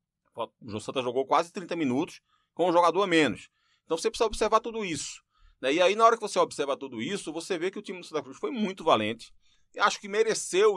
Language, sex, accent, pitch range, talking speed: Portuguese, male, Brazilian, 130-185 Hz, 235 wpm